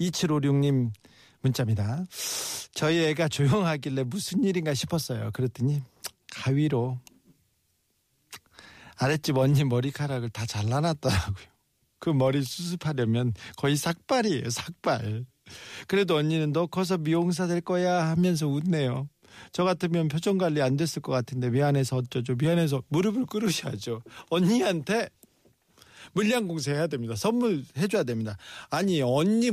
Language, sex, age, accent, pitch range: Korean, male, 40-59, native, 125-175 Hz